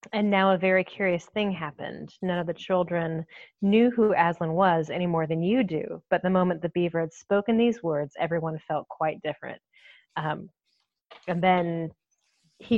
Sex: female